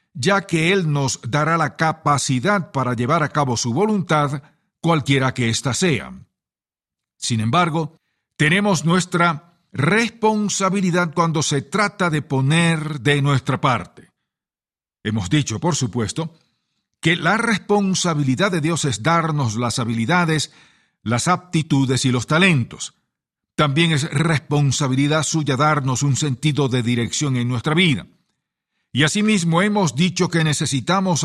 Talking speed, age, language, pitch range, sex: 125 wpm, 50-69, English, 135-180 Hz, male